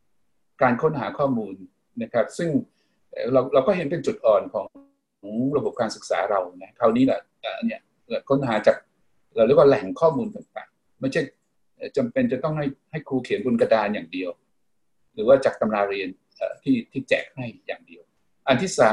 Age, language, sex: 60-79, Thai, male